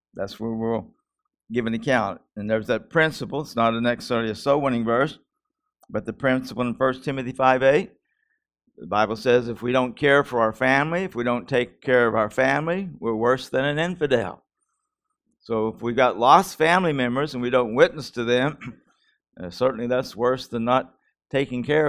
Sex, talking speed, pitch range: male, 185 wpm, 110-135 Hz